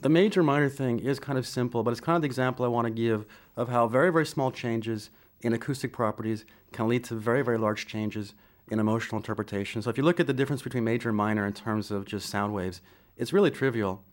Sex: male